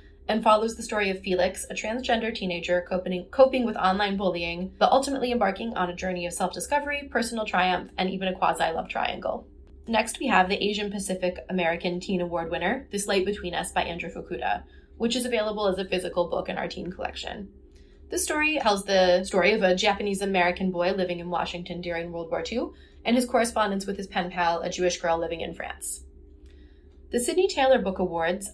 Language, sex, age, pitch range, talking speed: English, female, 20-39, 175-215 Hz, 190 wpm